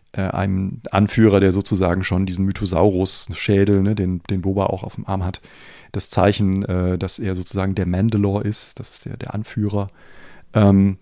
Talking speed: 165 wpm